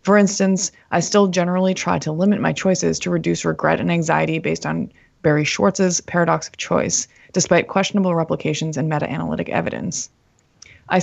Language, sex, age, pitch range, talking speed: English, female, 20-39, 160-185 Hz, 160 wpm